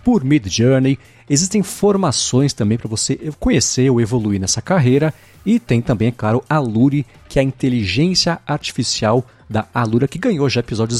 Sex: male